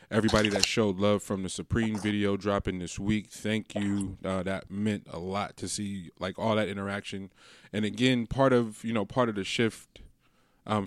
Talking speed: 195 wpm